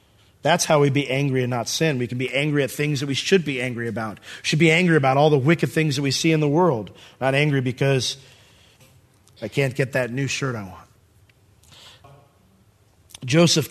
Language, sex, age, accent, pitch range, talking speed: English, male, 30-49, American, 120-180 Hz, 200 wpm